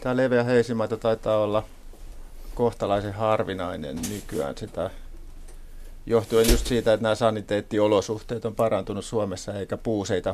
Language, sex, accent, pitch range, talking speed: Finnish, male, native, 80-110 Hz, 115 wpm